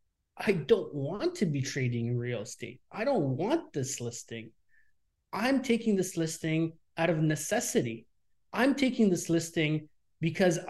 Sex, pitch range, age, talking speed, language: male, 145-195 Hz, 30-49, 145 wpm, English